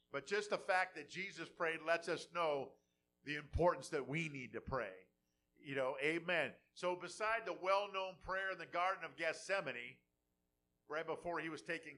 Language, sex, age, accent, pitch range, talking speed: English, male, 50-69, American, 140-185 Hz, 175 wpm